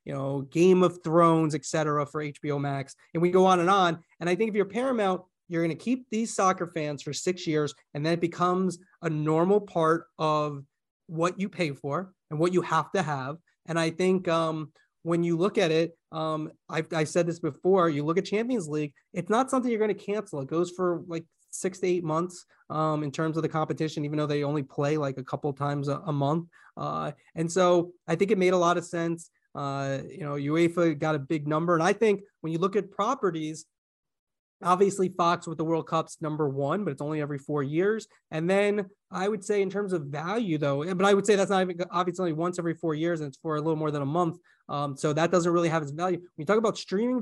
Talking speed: 240 wpm